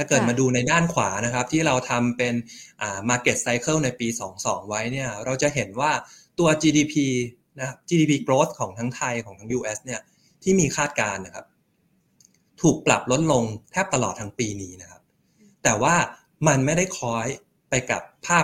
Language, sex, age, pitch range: Thai, male, 20-39, 115-150 Hz